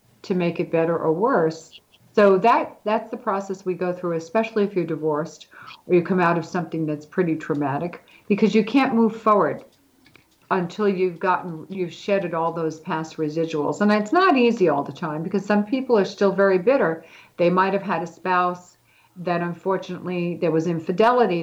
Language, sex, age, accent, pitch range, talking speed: English, female, 50-69, American, 165-205 Hz, 180 wpm